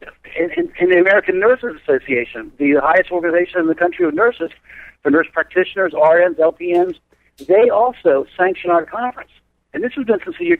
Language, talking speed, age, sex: English, 180 wpm, 60-79, male